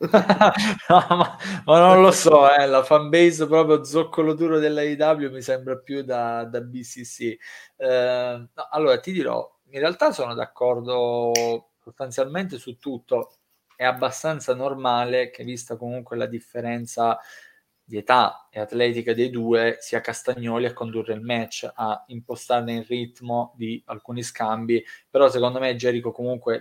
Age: 20-39